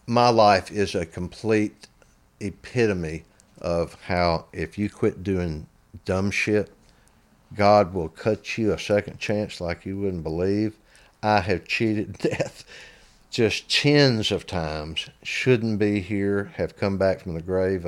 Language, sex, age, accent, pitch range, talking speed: English, male, 50-69, American, 80-100 Hz, 140 wpm